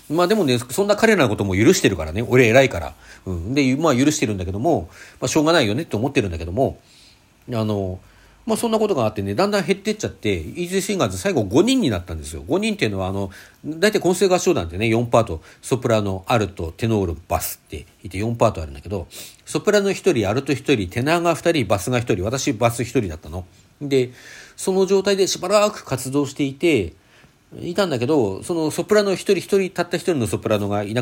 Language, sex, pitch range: Japanese, male, 95-150 Hz